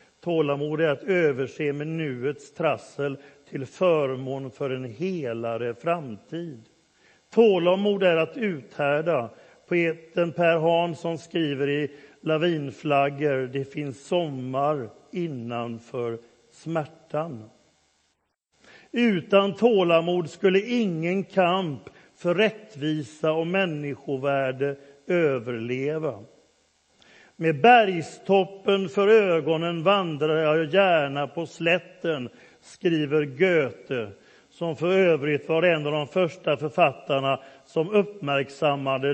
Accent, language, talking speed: native, Swedish, 95 wpm